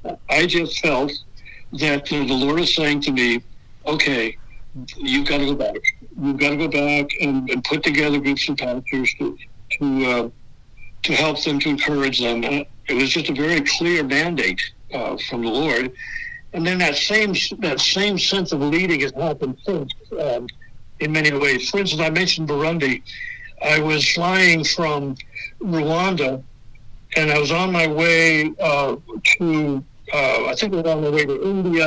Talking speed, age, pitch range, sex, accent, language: 180 wpm, 60-79, 140-175 Hz, male, American, English